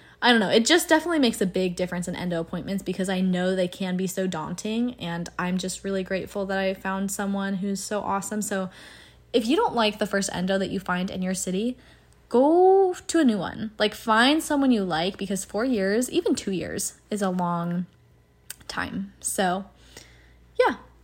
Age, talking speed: 10-29, 195 wpm